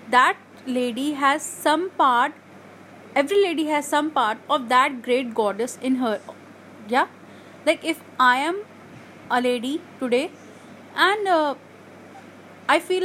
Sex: female